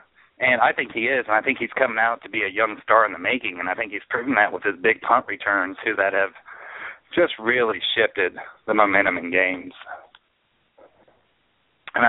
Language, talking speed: English, 205 wpm